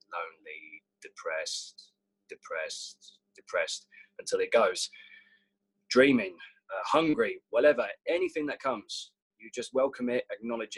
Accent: British